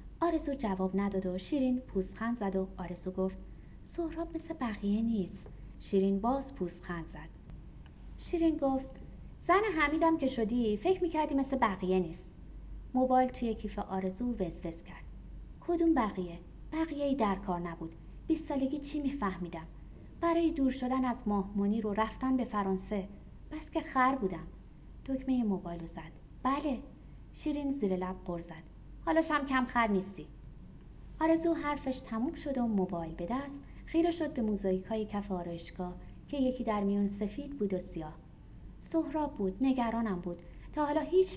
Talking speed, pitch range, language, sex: 145 wpm, 190-285 Hz, Persian, female